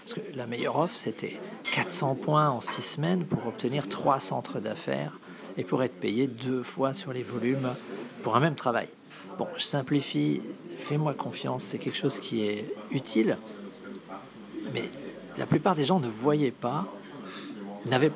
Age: 50-69